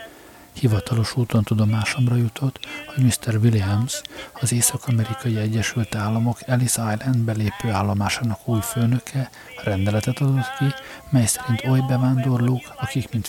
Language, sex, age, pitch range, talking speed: Hungarian, male, 50-69, 105-125 Hz, 115 wpm